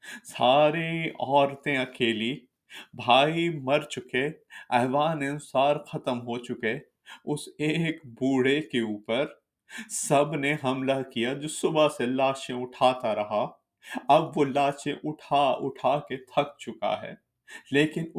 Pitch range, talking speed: 135-170 Hz, 115 wpm